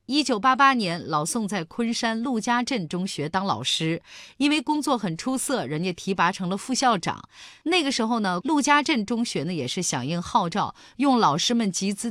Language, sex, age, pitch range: Chinese, female, 30-49, 170-245 Hz